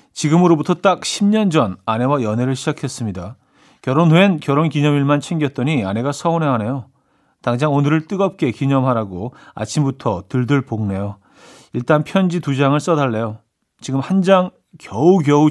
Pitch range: 120-165 Hz